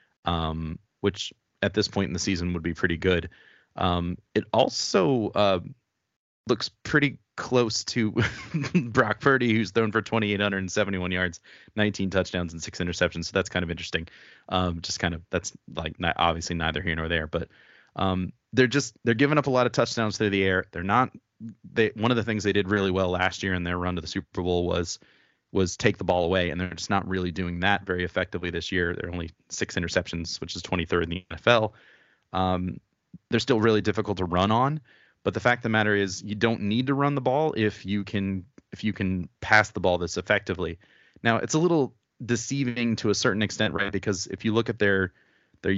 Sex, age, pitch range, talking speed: male, 30-49, 90-110 Hz, 210 wpm